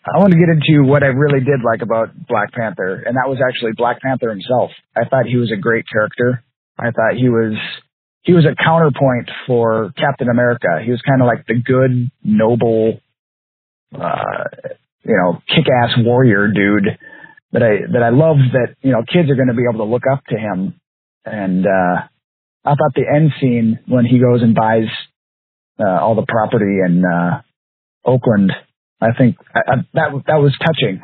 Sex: male